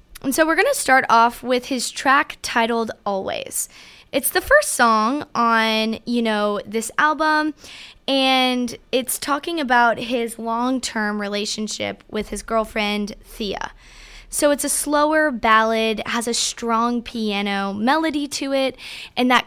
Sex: female